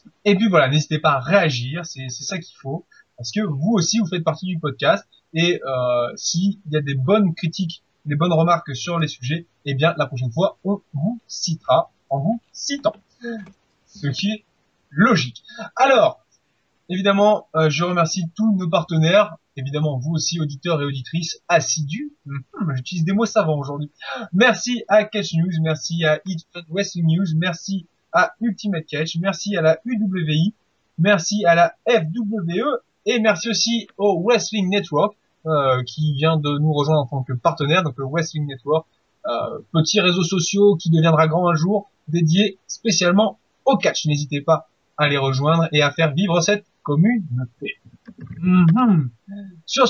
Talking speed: 165 wpm